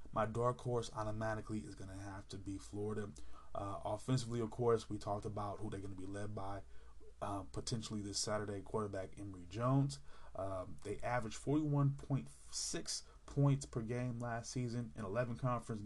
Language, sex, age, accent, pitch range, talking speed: English, male, 20-39, American, 95-110 Hz, 165 wpm